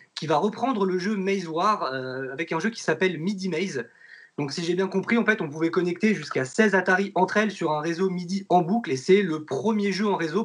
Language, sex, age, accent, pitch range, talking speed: French, male, 20-39, French, 145-195 Hz, 245 wpm